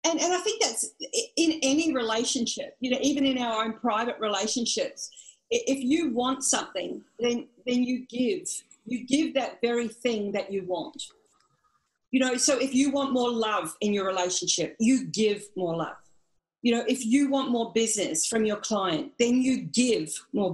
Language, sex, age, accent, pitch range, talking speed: English, female, 40-59, Australian, 215-270 Hz, 180 wpm